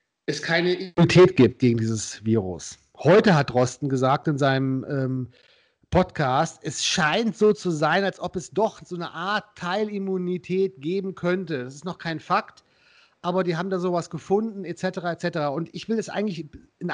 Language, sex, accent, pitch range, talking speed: German, male, German, 145-195 Hz, 175 wpm